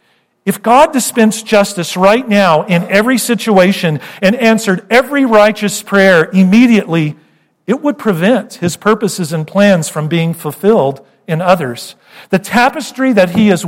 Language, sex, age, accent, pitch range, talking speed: English, male, 40-59, American, 155-225 Hz, 140 wpm